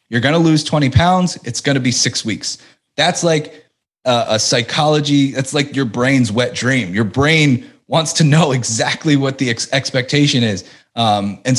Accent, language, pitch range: American, English, 125-170 Hz